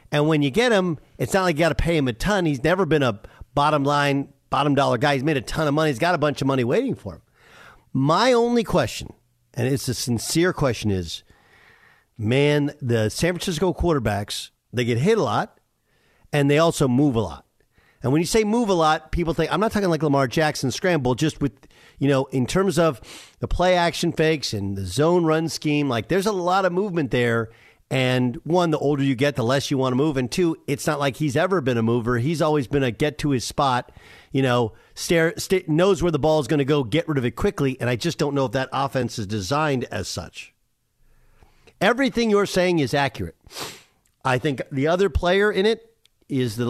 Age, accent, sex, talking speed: 50-69, American, male, 225 wpm